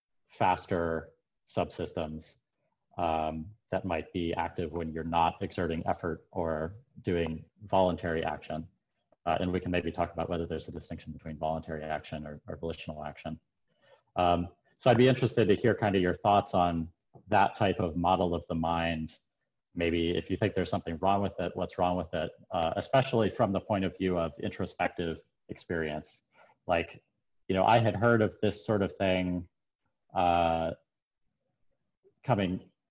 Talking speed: 160 wpm